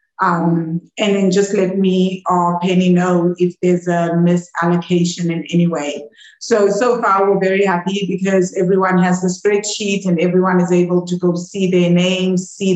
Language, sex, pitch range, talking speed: English, female, 175-195 Hz, 175 wpm